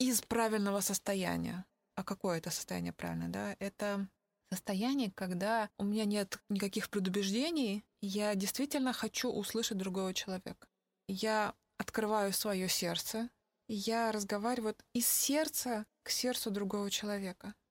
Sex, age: female, 20-39